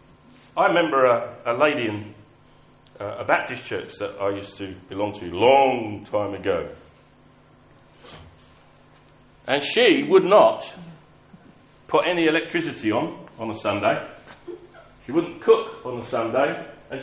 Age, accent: 40-59, British